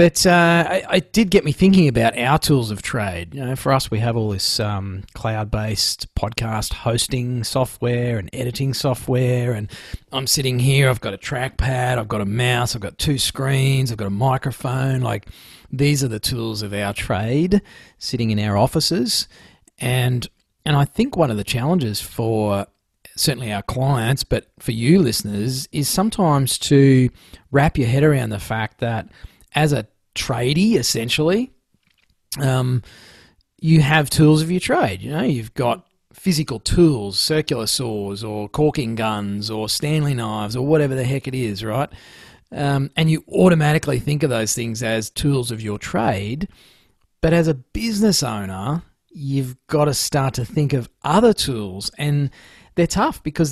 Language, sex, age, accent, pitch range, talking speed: English, male, 30-49, Australian, 110-150 Hz, 165 wpm